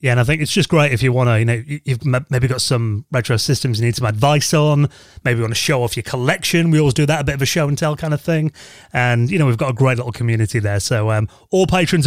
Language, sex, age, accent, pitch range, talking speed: English, male, 30-49, British, 125-155 Hz, 300 wpm